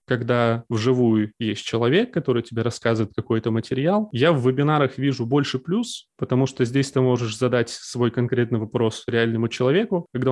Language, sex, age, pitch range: Russian, male, 20-39, 115-145 Hz